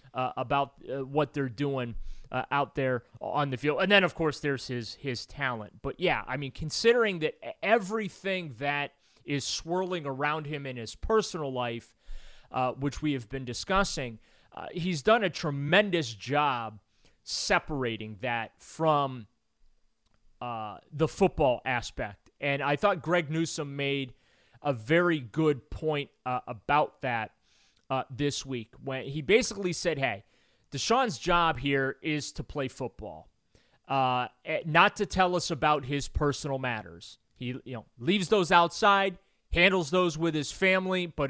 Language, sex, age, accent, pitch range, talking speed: English, male, 30-49, American, 125-170 Hz, 150 wpm